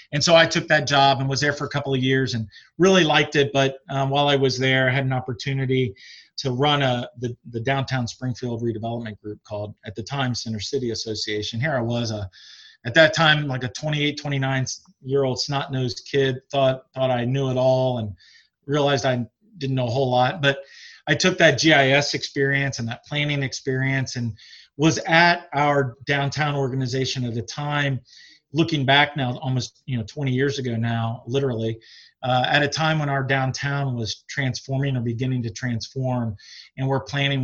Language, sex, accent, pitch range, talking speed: English, male, American, 125-140 Hz, 190 wpm